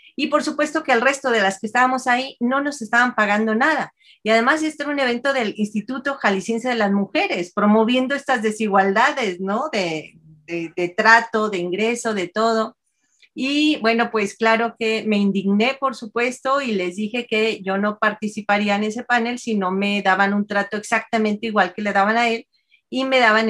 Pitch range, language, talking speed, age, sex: 195-235 Hz, Spanish, 190 wpm, 40-59, female